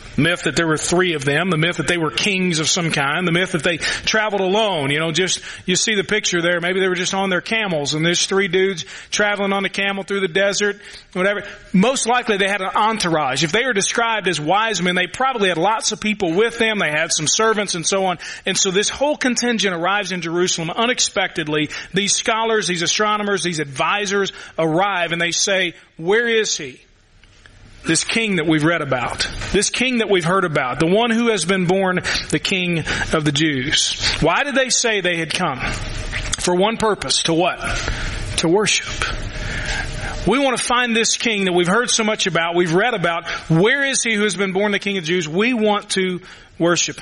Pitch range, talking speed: 160-205 Hz, 215 wpm